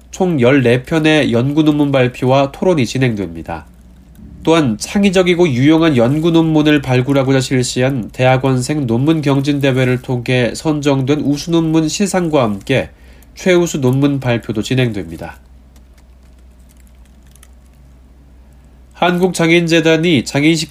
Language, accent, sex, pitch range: Korean, native, male, 95-160 Hz